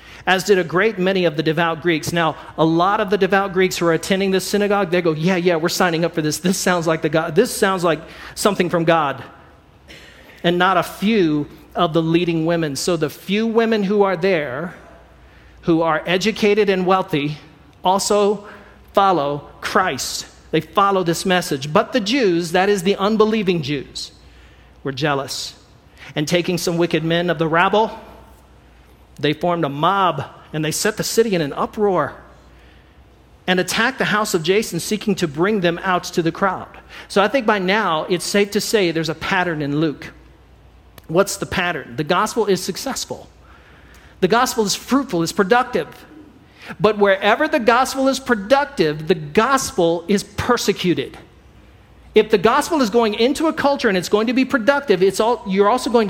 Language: English